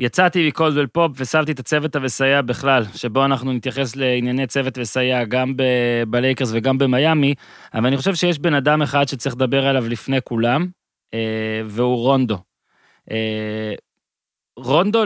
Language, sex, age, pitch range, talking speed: Hebrew, male, 20-39, 125-150 Hz, 135 wpm